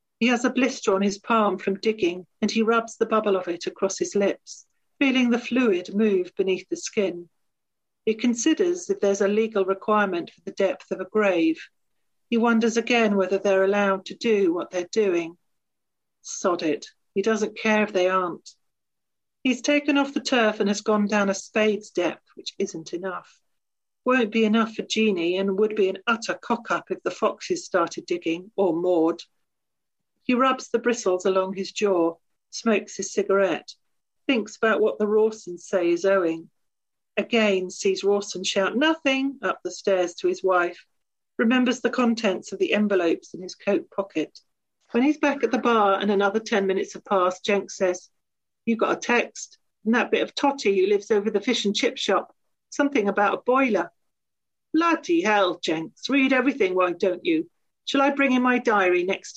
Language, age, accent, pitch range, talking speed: English, 40-59, British, 190-240 Hz, 180 wpm